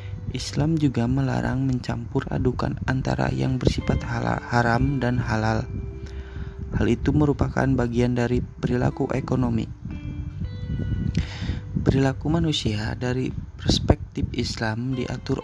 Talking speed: 95 wpm